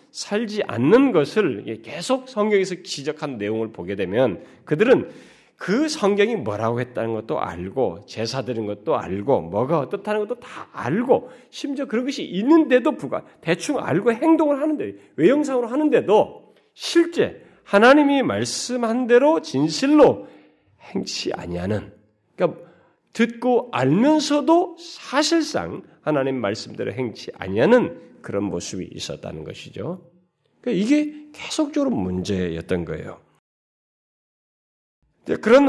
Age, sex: 40-59, male